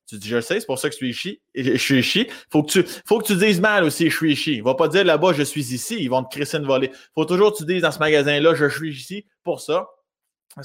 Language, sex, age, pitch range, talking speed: French, male, 20-39, 130-180 Hz, 335 wpm